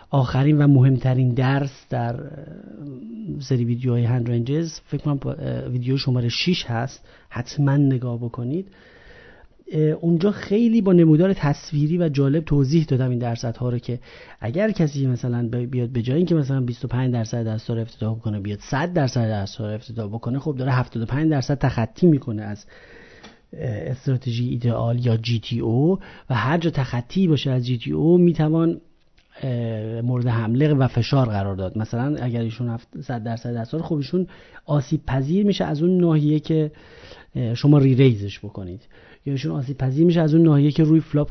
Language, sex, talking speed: Persian, male, 155 wpm